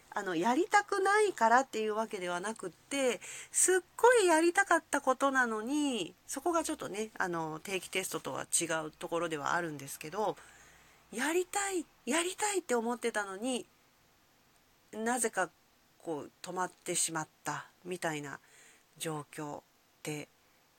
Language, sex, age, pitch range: Japanese, female, 40-59, 175-285 Hz